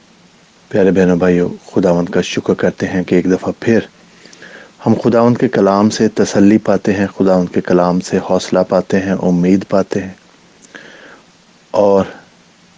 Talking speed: 145 wpm